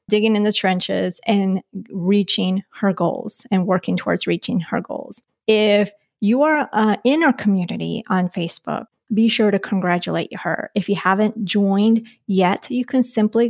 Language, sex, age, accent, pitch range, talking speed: English, female, 30-49, American, 200-240 Hz, 160 wpm